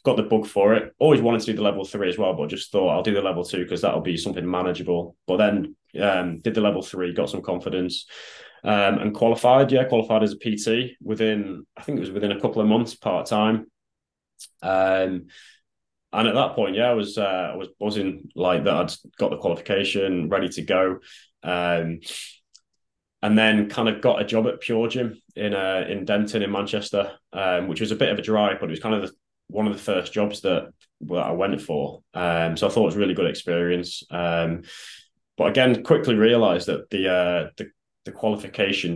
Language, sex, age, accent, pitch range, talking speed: English, male, 20-39, British, 90-105 Hz, 210 wpm